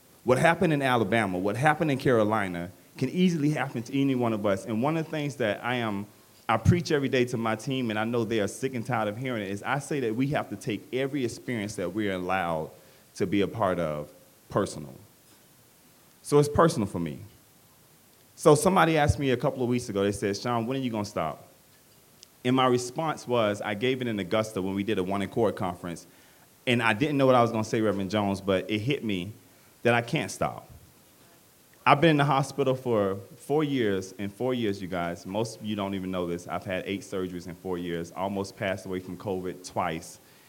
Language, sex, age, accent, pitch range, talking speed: English, male, 30-49, American, 95-125 Hz, 230 wpm